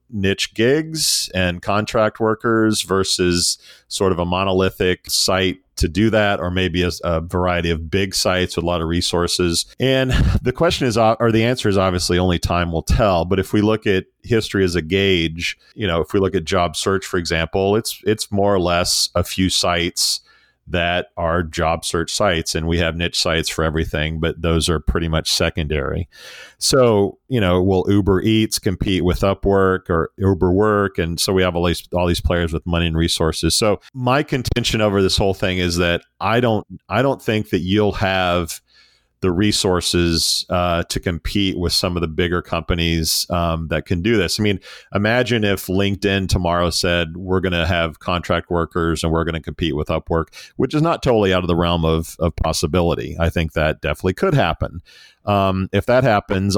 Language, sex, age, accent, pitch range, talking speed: English, male, 40-59, American, 85-100 Hz, 195 wpm